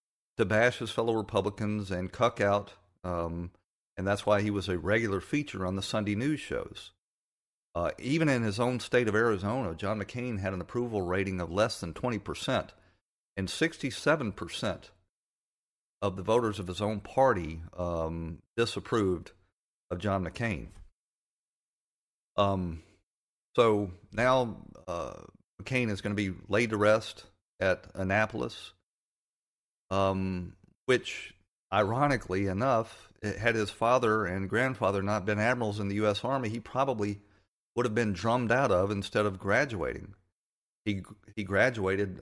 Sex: male